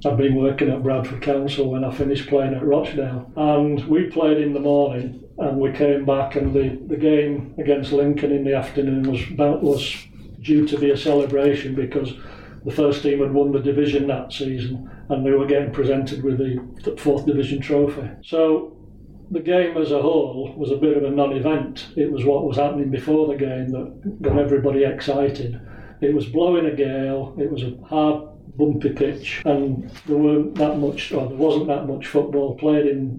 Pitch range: 135-150 Hz